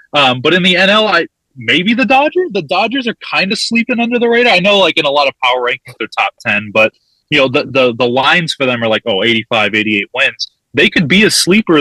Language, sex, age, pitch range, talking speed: English, male, 20-39, 115-160 Hz, 255 wpm